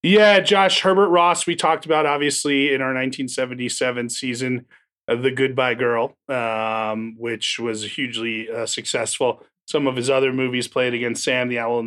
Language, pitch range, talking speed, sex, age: English, 120-155 Hz, 165 wpm, male, 30-49